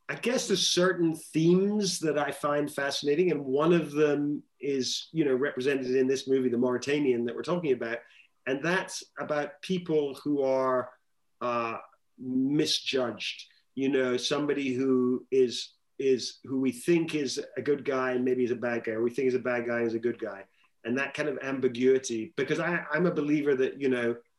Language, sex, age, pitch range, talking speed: English, male, 30-49, 125-150 Hz, 190 wpm